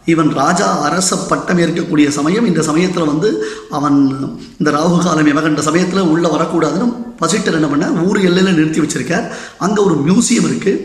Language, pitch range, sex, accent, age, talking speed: Tamil, 155-205 Hz, male, native, 20-39, 140 wpm